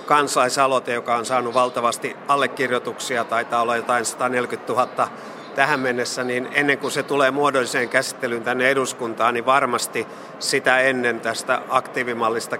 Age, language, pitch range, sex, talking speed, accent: 50-69, Finnish, 125-140 Hz, male, 135 wpm, native